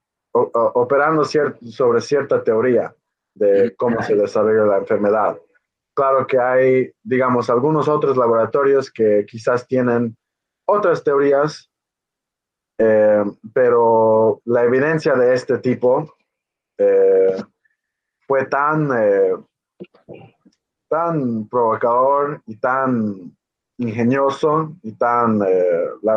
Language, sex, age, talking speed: English, male, 30-49, 100 wpm